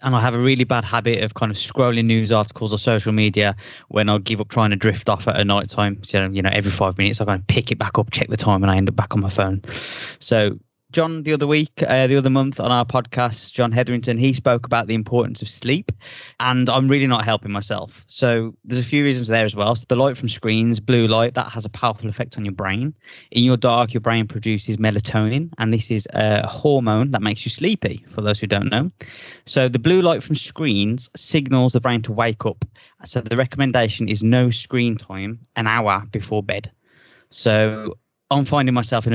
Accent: British